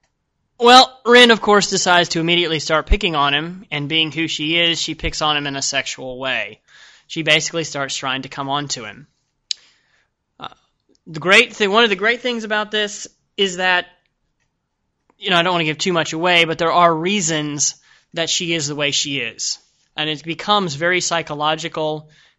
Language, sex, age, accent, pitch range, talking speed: English, male, 20-39, American, 145-180 Hz, 195 wpm